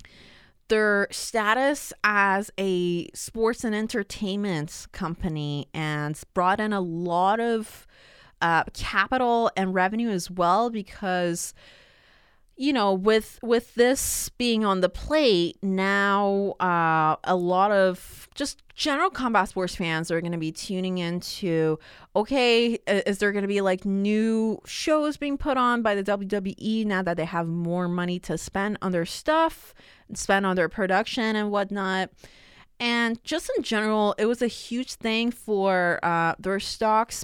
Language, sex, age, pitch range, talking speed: English, female, 20-39, 180-240 Hz, 150 wpm